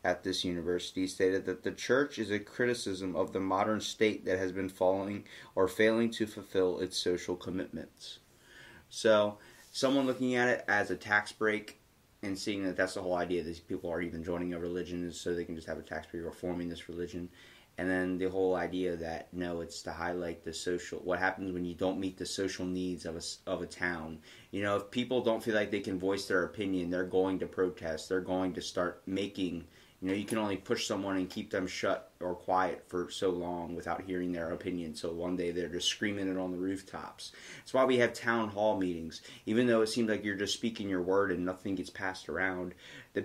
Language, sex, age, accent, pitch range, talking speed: English, male, 30-49, American, 90-110 Hz, 225 wpm